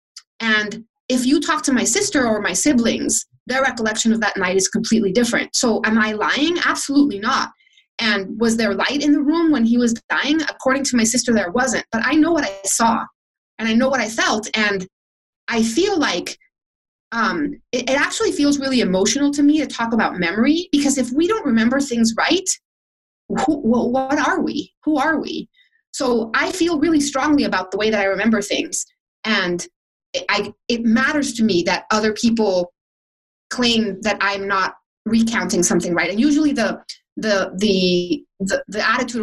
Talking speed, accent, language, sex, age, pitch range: 185 wpm, American, English, female, 30-49, 205-285 Hz